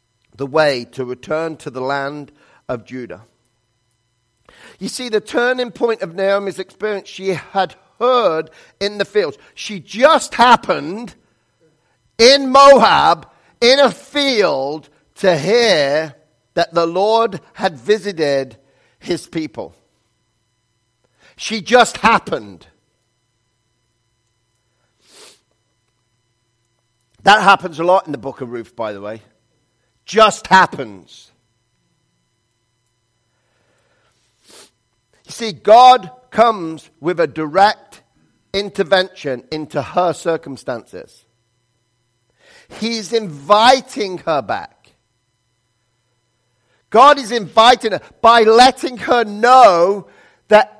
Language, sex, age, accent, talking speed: English, male, 50-69, British, 95 wpm